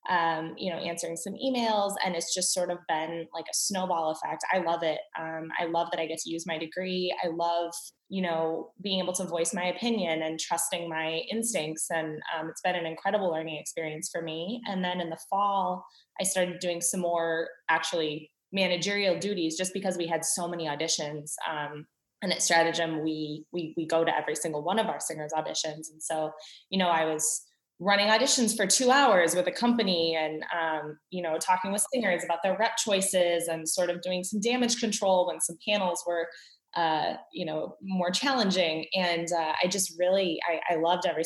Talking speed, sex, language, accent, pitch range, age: 200 wpm, female, English, American, 160-190 Hz, 20-39